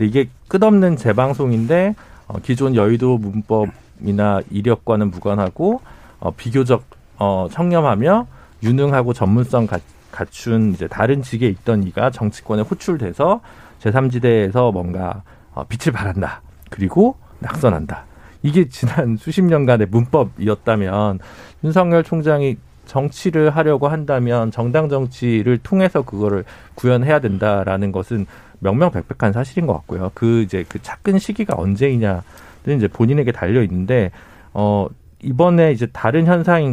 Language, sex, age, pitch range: Korean, male, 50-69, 100-155 Hz